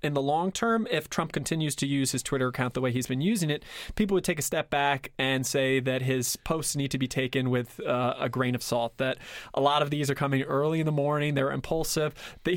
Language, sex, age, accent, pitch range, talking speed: English, male, 20-39, American, 135-165 Hz, 255 wpm